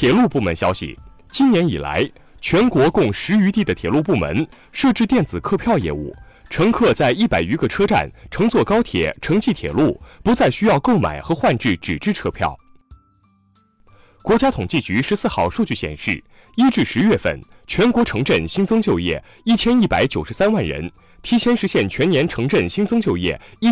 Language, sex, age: Chinese, male, 20-39